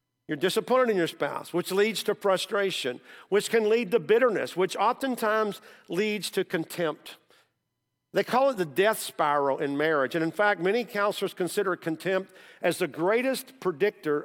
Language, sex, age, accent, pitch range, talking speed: English, male, 50-69, American, 160-215 Hz, 160 wpm